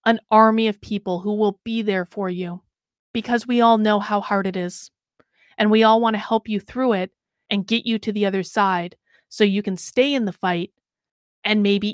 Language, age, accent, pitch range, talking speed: English, 30-49, American, 200-240 Hz, 215 wpm